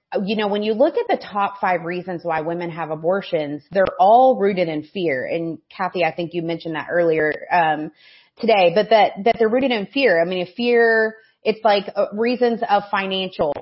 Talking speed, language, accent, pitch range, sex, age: 195 wpm, English, American, 175-220 Hz, female, 30-49